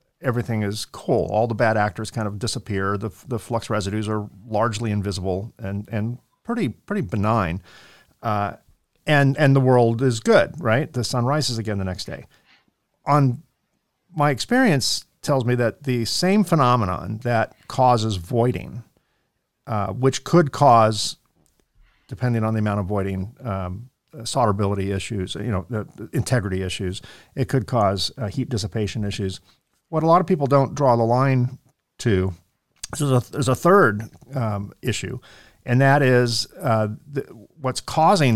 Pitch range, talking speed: 105-130 Hz, 155 wpm